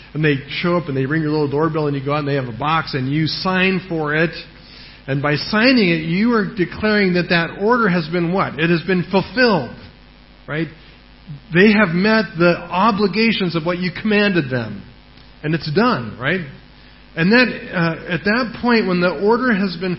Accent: American